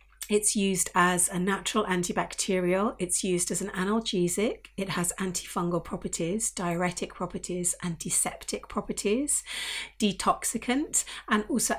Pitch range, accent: 180-215 Hz, British